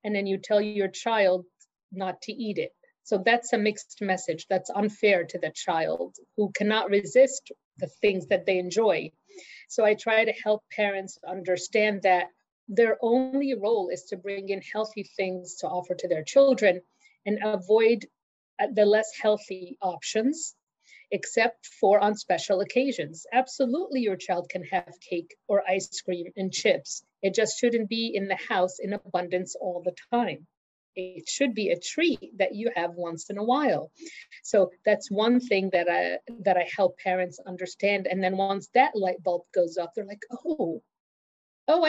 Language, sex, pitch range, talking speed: English, female, 185-225 Hz, 170 wpm